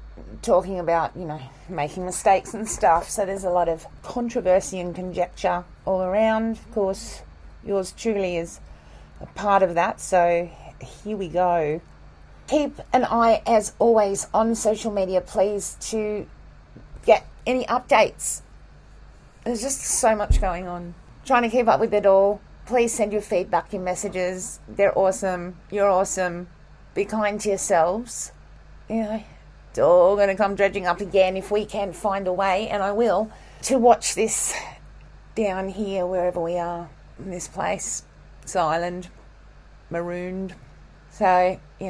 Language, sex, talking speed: English, female, 155 wpm